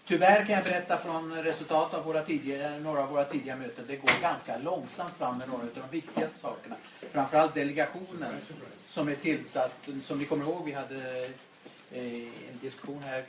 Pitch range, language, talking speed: 125-160 Hz, Swedish, 175 wpm